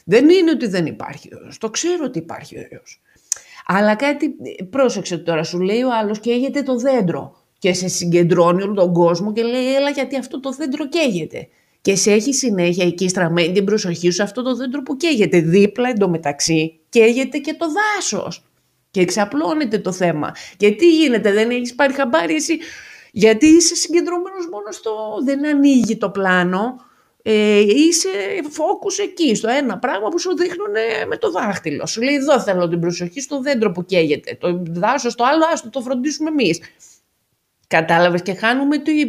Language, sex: Greek, female